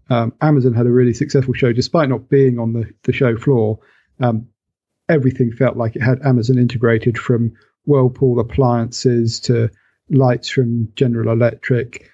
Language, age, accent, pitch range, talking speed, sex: English, 40-59, British, 115-135 Hz, 155 wpm, male